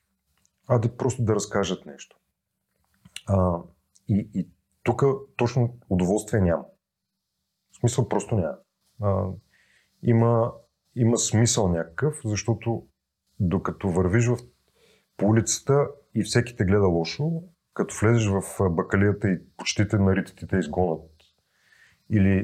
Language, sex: Bulgarian, male